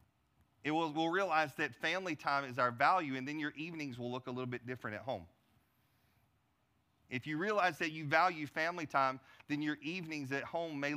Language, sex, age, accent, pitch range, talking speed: English, male, 40-59, American, 115-140 Hz, 190 wpm